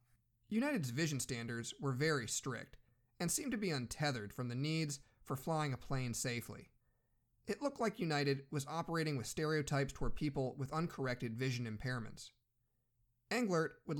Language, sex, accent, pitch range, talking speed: English, male, American, 120-155 Hz, 150 wpm